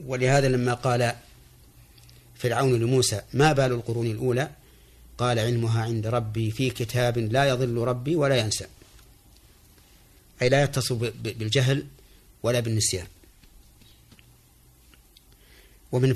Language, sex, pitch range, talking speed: Arabic, male, 100-125 Hz, 105 wpm